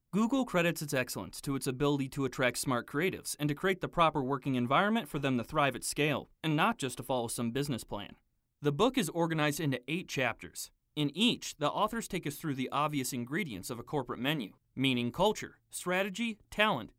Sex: male